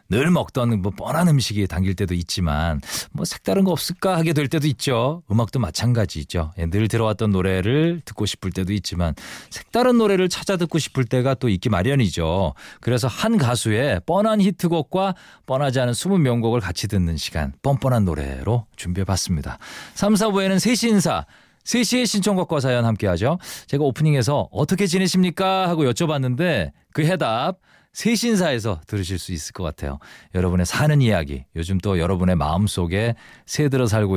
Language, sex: Korean, male